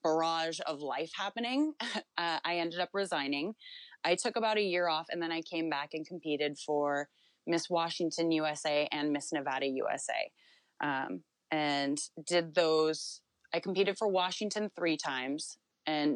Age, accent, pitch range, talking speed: 20-39, American, 150-180 Hz, 150 wpm